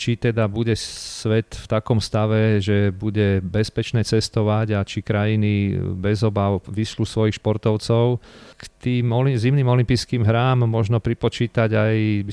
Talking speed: 135 wpm